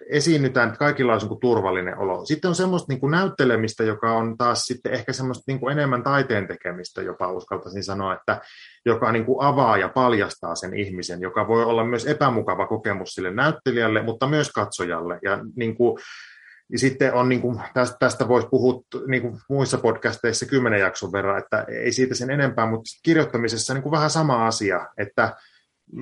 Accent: native